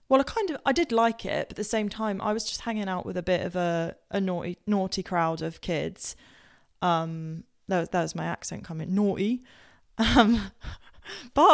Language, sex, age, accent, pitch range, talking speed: English, female, 20-39, British, 165-205 Hz, 210 wpm